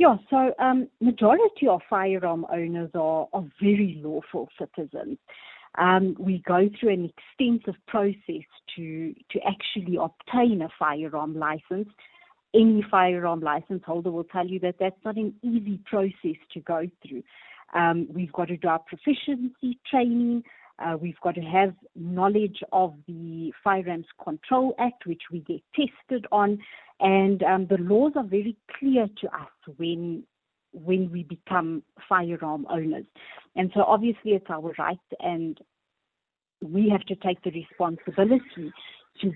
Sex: female